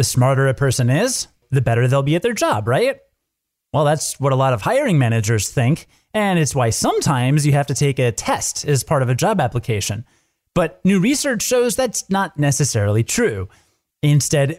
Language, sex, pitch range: English, male, 125-175 Hz